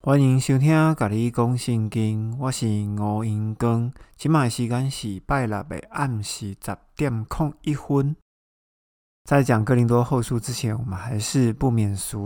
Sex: male